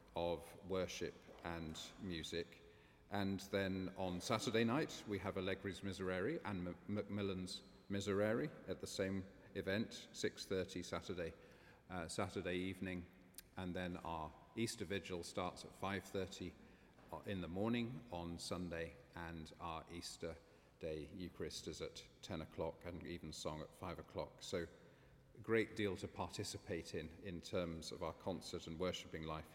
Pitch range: 90-105 Hz